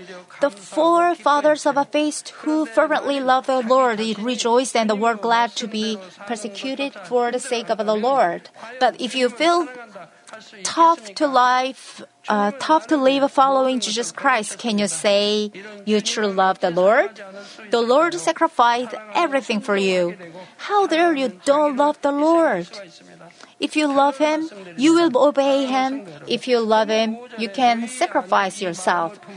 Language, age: Korean, 30-49